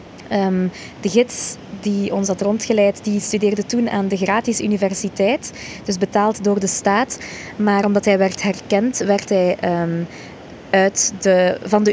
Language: Dutch